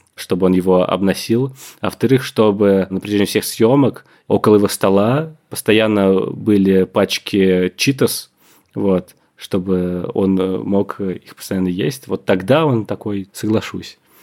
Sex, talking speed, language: male, 125 wpm, Russian